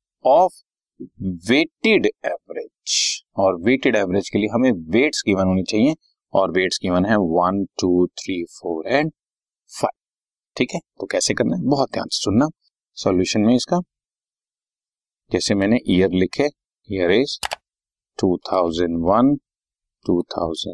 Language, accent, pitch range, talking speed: Hindi, native, 95-130 Hz, 105 wpm